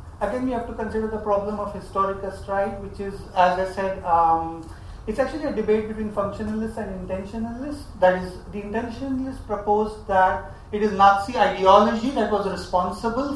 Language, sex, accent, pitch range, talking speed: English, male, Indian, 180-210 Hz, 165 wpm